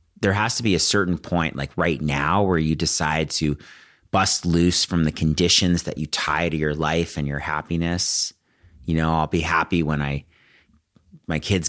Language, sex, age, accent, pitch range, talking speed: English, male, 30-49, American, 75-90 Hz, 190 wpm